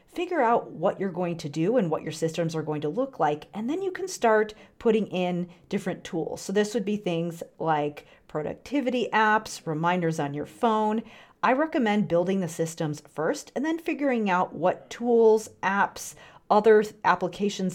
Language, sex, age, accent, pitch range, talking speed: English, female, 40-59, American, 165-225 Hz, 175 wpm